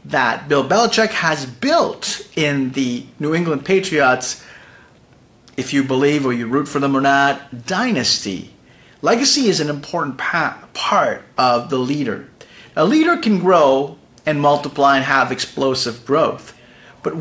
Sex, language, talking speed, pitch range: male, English, 140 wpm, 135-190 Hz